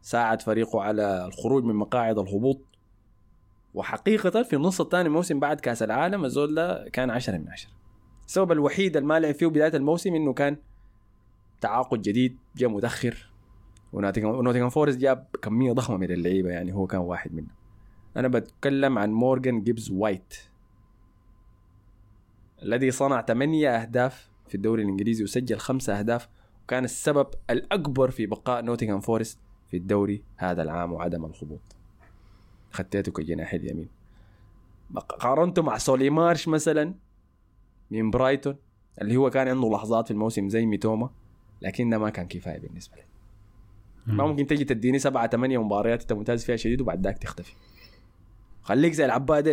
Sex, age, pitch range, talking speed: male, 20-39, 100-130 Hz, 140 wpm